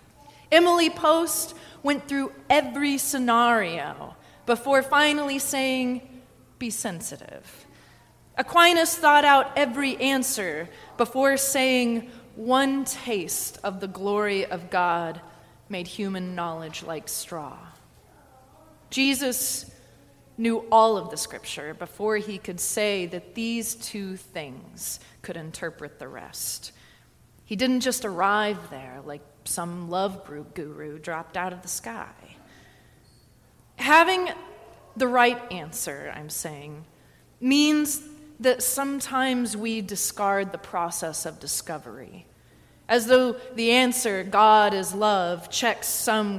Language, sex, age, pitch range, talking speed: English, female, 30-49, 175-260 Hz, 115 wpm